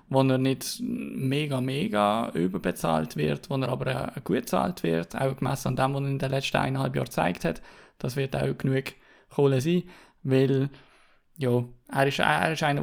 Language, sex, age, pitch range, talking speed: German, male, 20-39, 130-145 Hz, 180 wpm